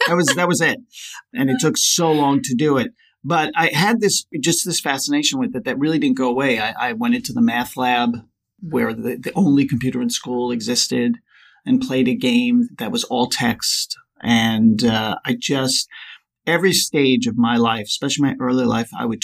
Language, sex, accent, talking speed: English, male, American, 205 wpm